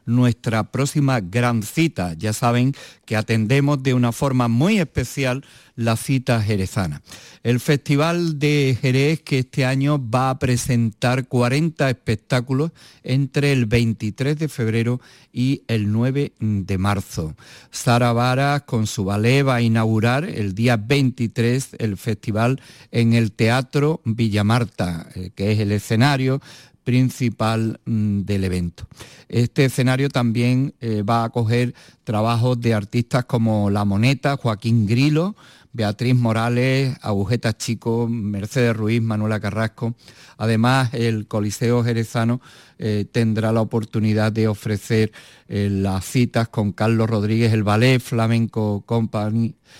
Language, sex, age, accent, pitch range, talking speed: Spanish, male, 50-69, Spanish, 110-130 Hz, 125 wpm